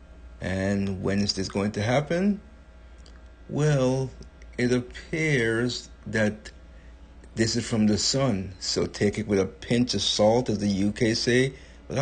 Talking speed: 145 wpm